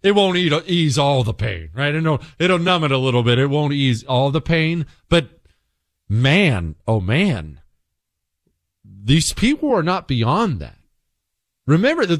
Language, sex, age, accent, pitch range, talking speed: English, male, 40-59, American, 125-195 Hz, 150 wpm